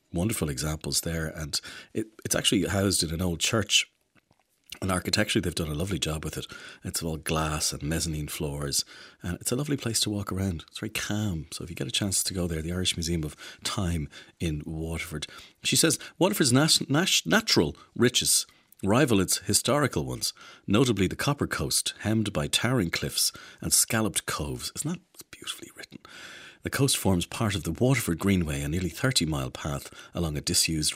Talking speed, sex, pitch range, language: 180 wpm, male, 75-105 Hz, English